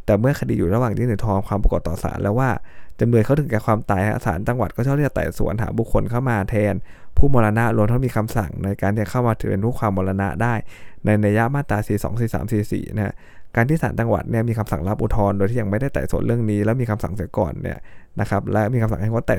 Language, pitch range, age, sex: Thai, 100-115 Hz, 20-39, male